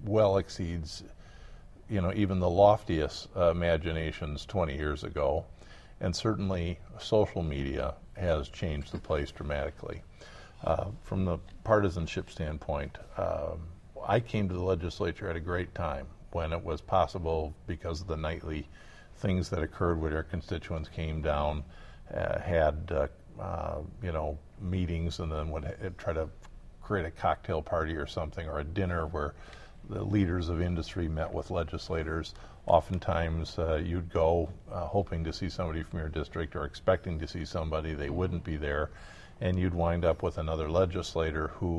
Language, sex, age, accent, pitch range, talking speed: English, male, 50-69, American, 80-95 Hz, 160 wpm